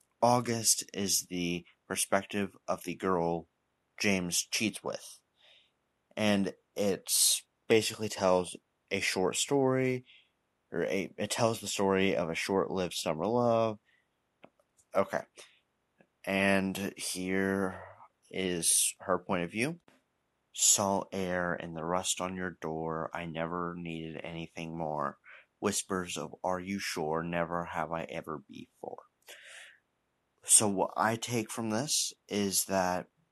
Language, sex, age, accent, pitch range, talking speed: English, male, 30-49, American, 85-100 Hz, 120 wpm